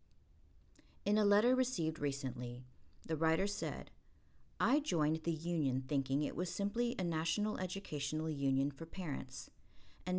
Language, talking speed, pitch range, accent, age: English, 135 wpm, 135-175 Hz, American, 50-69